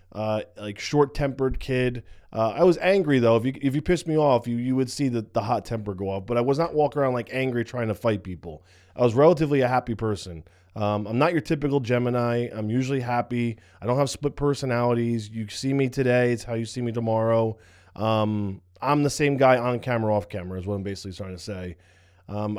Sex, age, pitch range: male, 20-39, 105-135 Hz